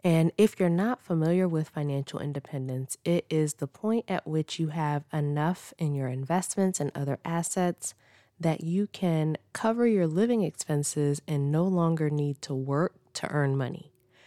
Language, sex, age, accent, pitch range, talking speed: English, female, 20-39, American, 140-175 Hz, 165 wpm